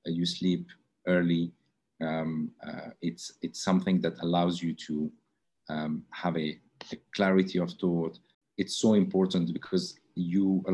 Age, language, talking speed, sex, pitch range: 40-59, English, 140 wpm, male, 85-95 Hz